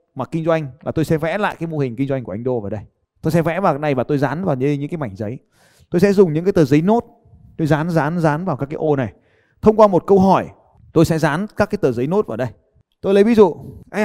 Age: 20-39